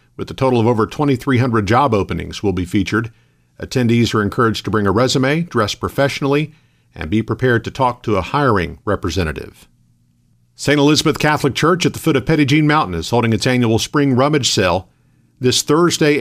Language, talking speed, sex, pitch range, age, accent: English, 180 wpm, male, 110-140 Hz, 50-69, American